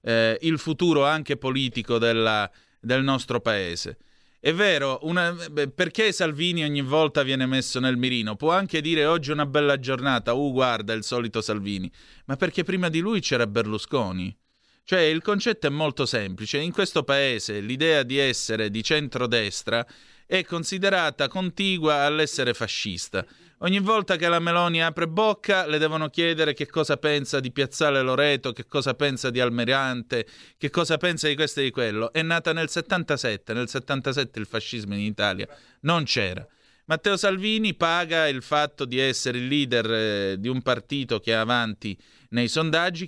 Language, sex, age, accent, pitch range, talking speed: Italian, male, 30-49, native, 115-160 Hz, 165 wpm